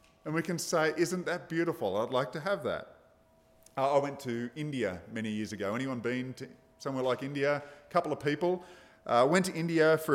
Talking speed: 200 wpm